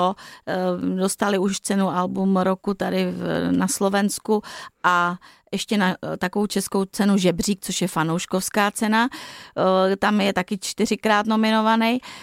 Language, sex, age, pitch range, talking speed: Slovak, female, 30-49, 190-235 Hz, 120 wpm